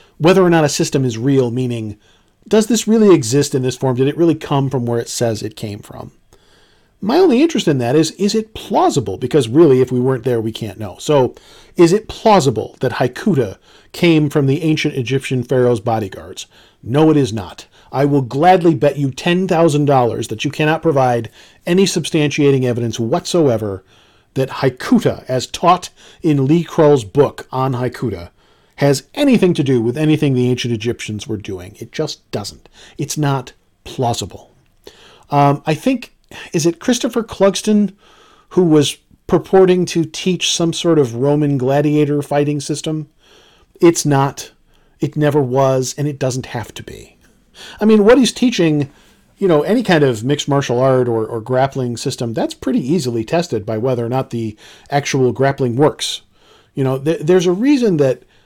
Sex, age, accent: male, 40-59, American